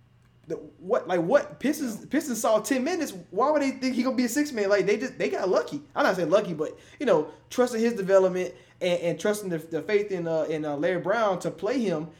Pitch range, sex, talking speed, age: 150-210 Hz, male, 240 wpm, 20-39